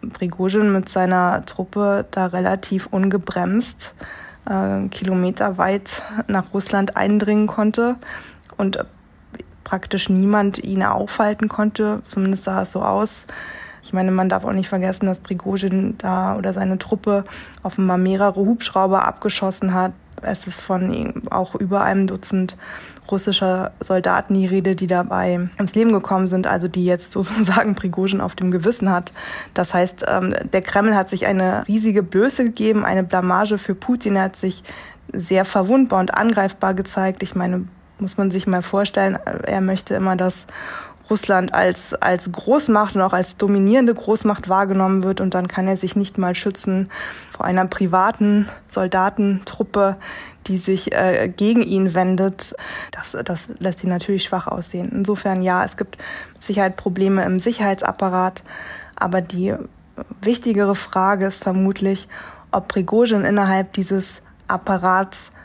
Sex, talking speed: female, 145 wpm